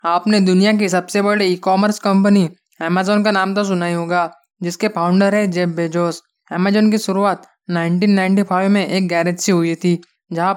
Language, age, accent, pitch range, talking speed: Hindi, 20-39, native, 180-200 Hz, 175 wpm